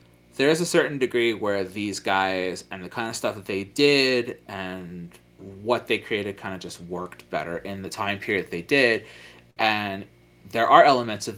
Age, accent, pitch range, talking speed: 30-49, American, 90-120 Hz, 195 wpm